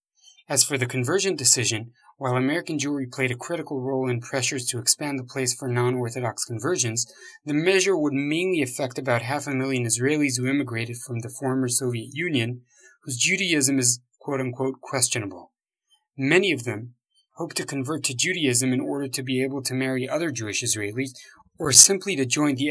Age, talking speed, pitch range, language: 30-49, 175 wpm, 125-155 Hz, English